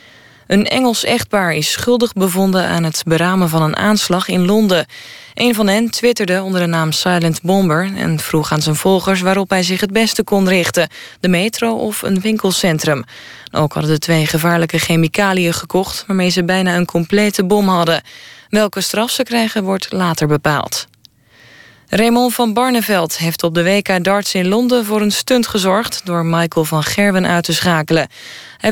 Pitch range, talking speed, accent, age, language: 160-210 Hz, 175 wpm, Dutch, 20-39, Dutch